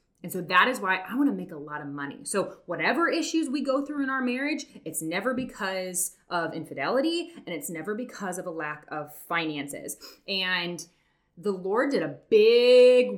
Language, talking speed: English, 190 wpm